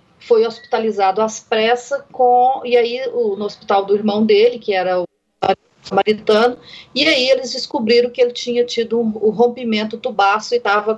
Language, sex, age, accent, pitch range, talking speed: Portuguese, female, 40-59, Brazilian, 210-260 Hz, 175 wpm